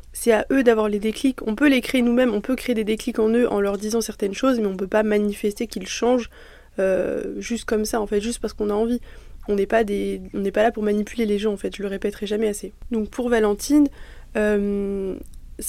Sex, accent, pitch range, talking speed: female, French, 205-245 Hz, 235 wpm